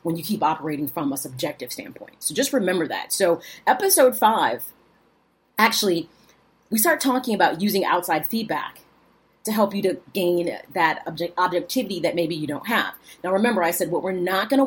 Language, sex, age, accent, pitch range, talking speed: English, female, 30-49, American, 170-230 Hz, 185 wpm